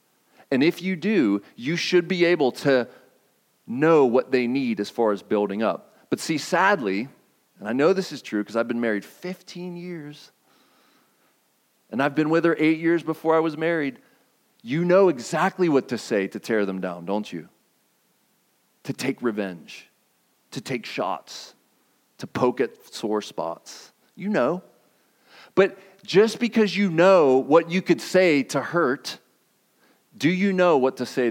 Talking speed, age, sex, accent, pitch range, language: 165 wpm, 40-59, male, American, 140-190 Hz, English